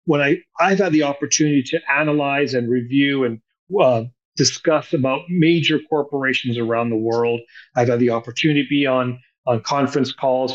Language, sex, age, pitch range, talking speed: English, male, 40-59, 130-155 Hz, 165 wpm